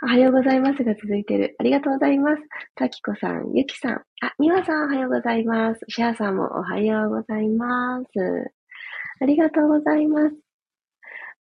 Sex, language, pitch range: female, Japanese, 205-285 Hz